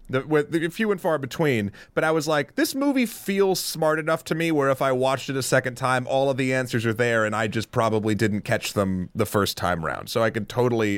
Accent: American